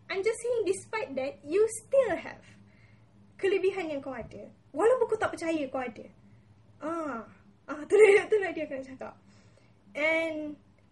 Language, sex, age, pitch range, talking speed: English, female, 20-39, 245-325 Hz, 135 wpm